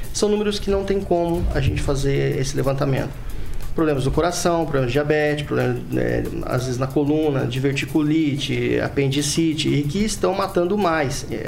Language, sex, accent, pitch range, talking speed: Portuguese, male, Brazilian, 130-160 Hz, 155 wpm